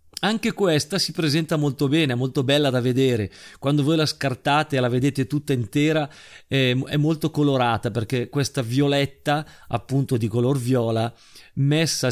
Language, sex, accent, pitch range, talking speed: Italian, male, native, 120-150 Hz, 160 wpm